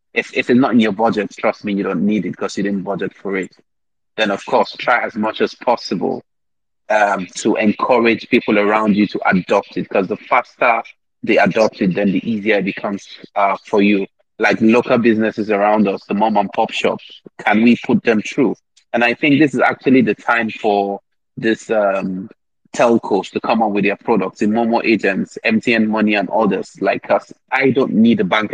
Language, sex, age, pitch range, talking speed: English, male, 30-49, 105-125 Hz, 200 wpm